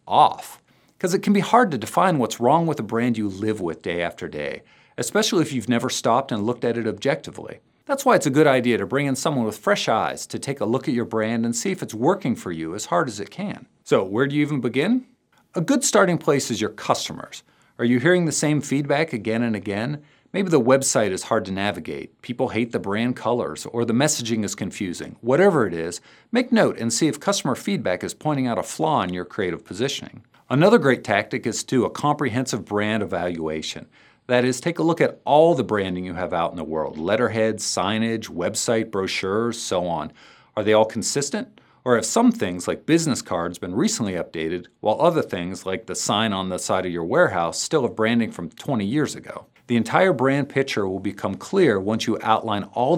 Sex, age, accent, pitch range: male, 50-69, American, 105-145 Hz